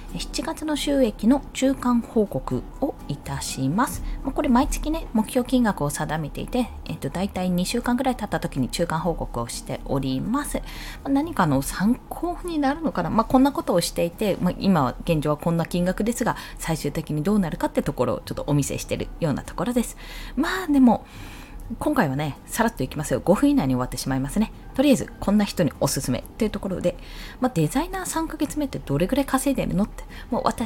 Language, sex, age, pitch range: Japanese, female, 20-39, 155-255 Hz